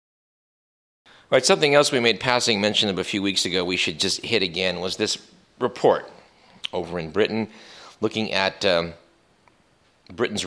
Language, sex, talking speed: English, male, 160 wpm